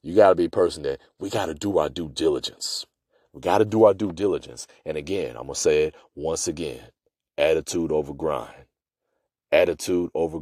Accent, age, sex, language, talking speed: American, 30-49, male, English, 200 wpm